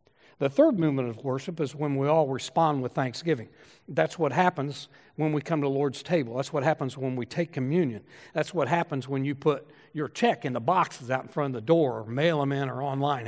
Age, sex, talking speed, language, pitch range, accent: 60-79, male, 235 wpm, English, 130-165 Hz, American